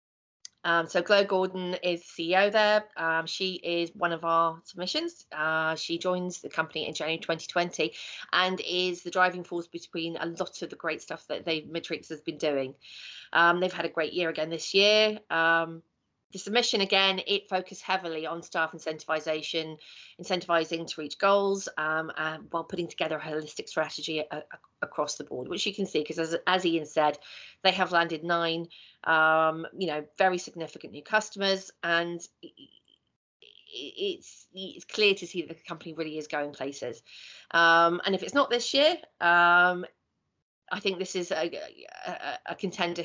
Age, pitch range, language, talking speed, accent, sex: 30-49, 160-190 Hz, English, 175 wpm, British, female